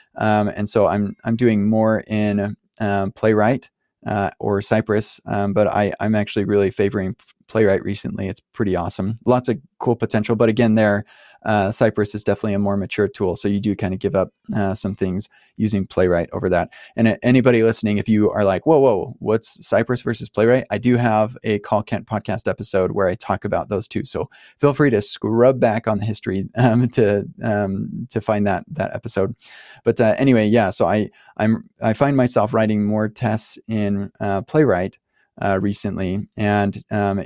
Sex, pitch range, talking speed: male, 100-115 Hz, 190 wpm